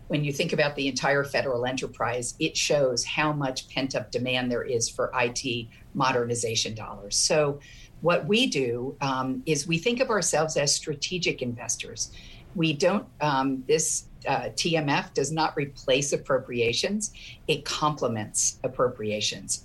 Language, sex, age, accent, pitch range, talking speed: English, female, 50-69, American, 125-160 Hz, 140 wpm